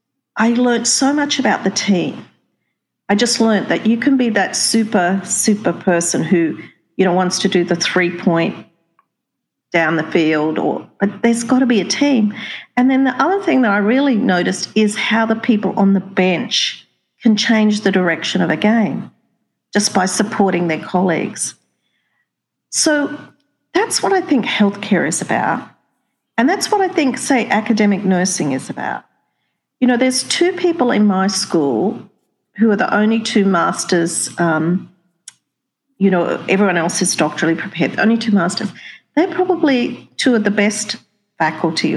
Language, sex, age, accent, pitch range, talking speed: English, female, 50-69, Australian, 180-245 Hz, 165 wpm